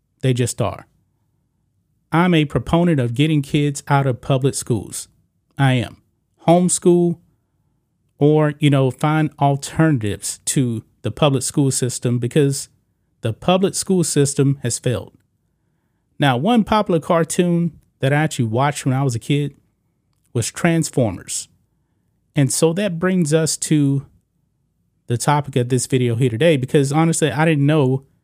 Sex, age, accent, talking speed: male, 30-49, American, 140 wpm